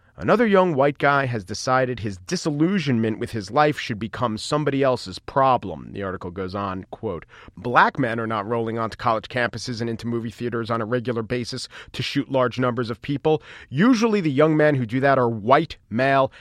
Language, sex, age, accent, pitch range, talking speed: English, male, 40-59, American, 120-150 Hz, 195 wpm